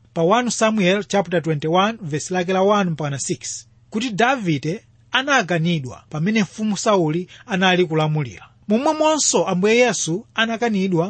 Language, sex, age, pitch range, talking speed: English, male, 30-49, 155-215 Hz, 110 wpm